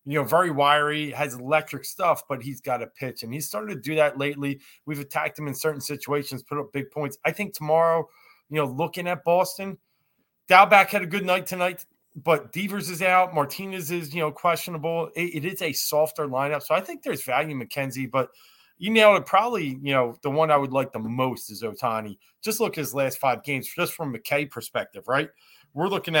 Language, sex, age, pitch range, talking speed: English, male, 30-49, 140-180 Hz, 220 wpm